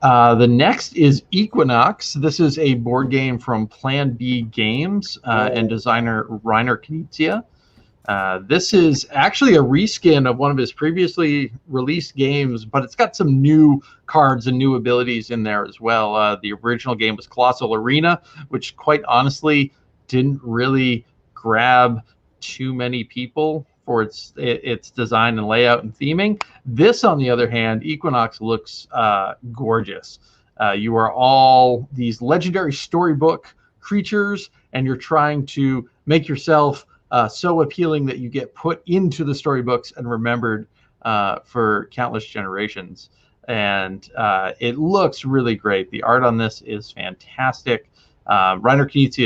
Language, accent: English, American